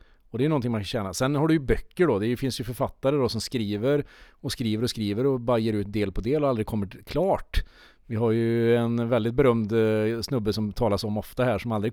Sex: male